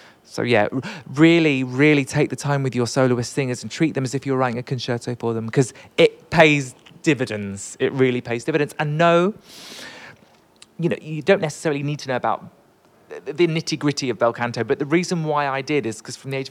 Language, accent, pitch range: English, British, 125-160 Hz